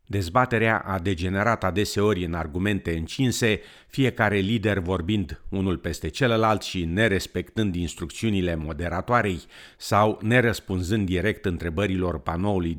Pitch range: 85-110 Hz